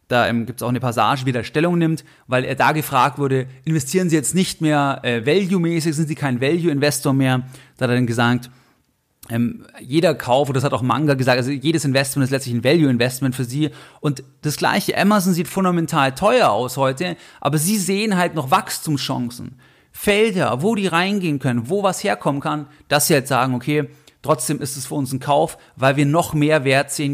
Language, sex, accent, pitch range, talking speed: German, male, German, 130-160 Hz, 205 wpm